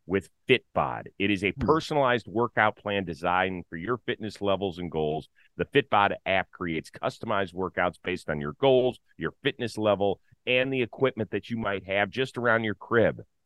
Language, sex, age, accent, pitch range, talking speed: English, male, 40-59, American, 95-120 Hz, 175 wpm